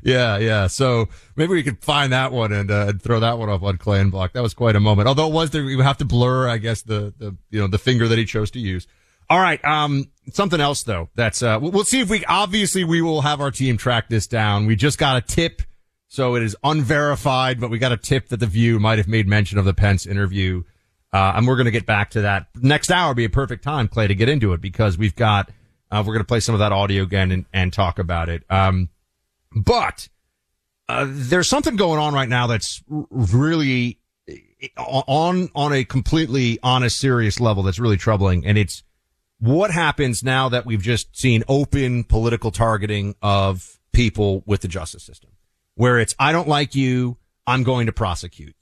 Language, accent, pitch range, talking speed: English, American, 100-135 Hz, 220 wpm